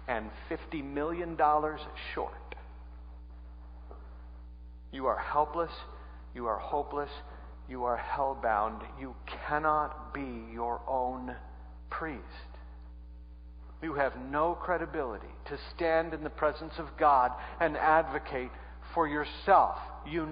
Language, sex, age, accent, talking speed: English, male, 50-69, American, 105 wpm